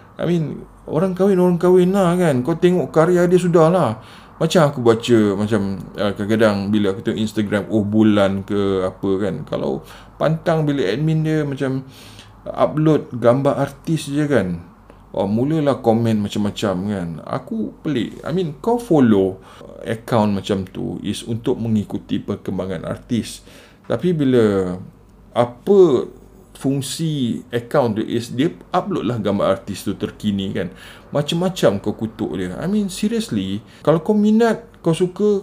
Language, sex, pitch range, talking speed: Malay, male, 105-165 Hz, 140 wpm